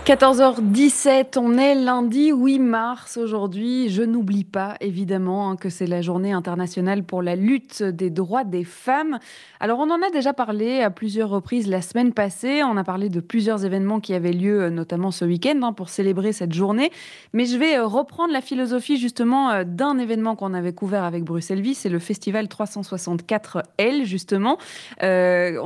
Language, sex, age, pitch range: French, female, 20-39, 190-250 Hz